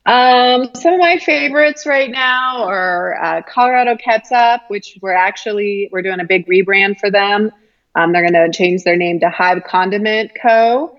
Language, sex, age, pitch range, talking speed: English, female, 20-39, 175-215 Hz, 175 wpm